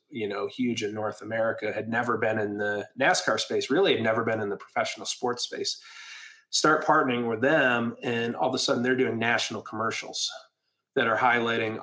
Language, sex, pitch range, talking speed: English, male, 110-140 Hz, 195 wpm